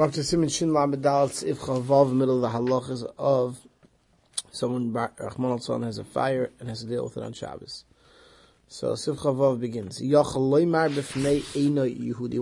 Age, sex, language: 30-49, male, English